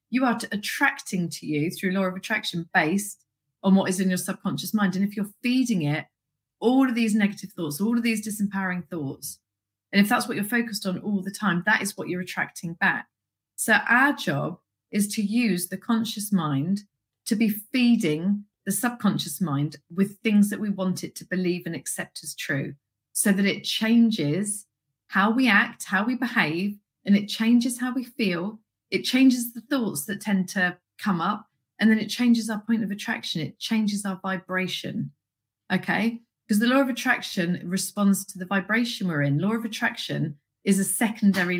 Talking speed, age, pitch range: 190 wpm, 30-49, 175-215 Hz